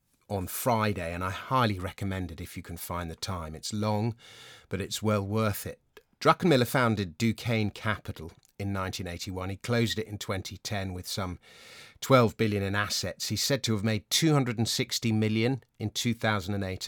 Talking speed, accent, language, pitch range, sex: 165 wpm, British, English, 95-120 Hz, male